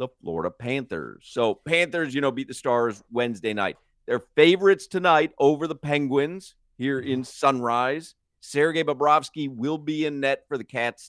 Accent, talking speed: American, 160 wpm